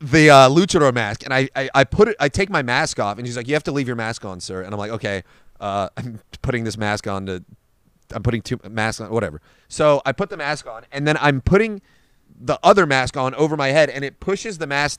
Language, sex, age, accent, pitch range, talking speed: English, male, 30-49, American, 115-155 Hz, 260 wpm